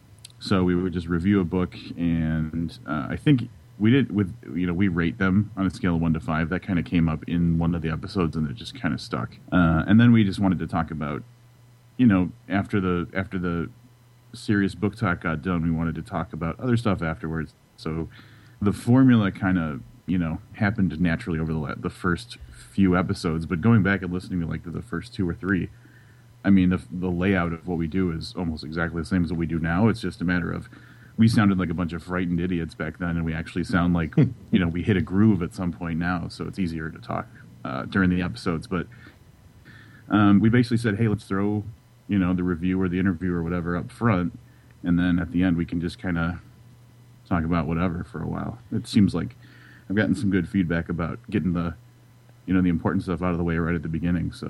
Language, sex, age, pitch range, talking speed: English, male, 30-49, 85-105 Hz, 235 wpm